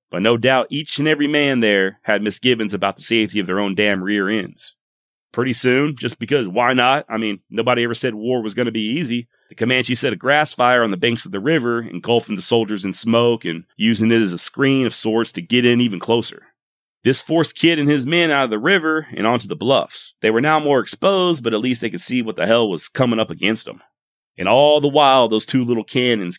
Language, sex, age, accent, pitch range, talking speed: English, male, 30-49, American, 110-130 Hz, 245 wpm